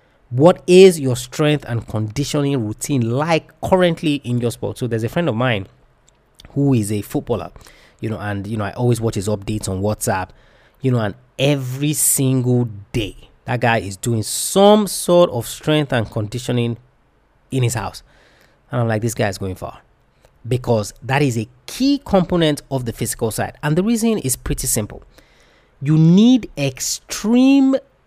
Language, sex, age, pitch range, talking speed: English, male, 30-49, 110-150 Hz, 170 wpm